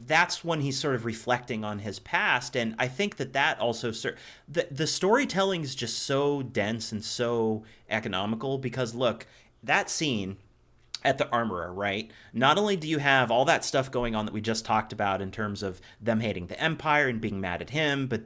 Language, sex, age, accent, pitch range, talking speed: English, male, 30-49, American, 110-140 Hz, 205 wpm